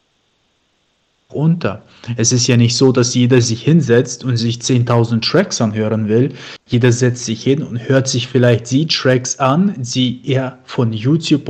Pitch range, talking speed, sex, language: 115-135 Hz, 155 wpm, male, German